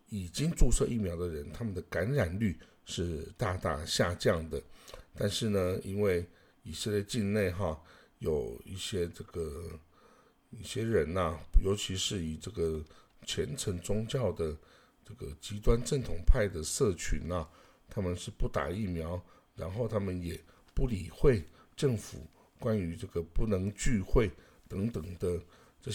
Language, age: Chinese, 60-79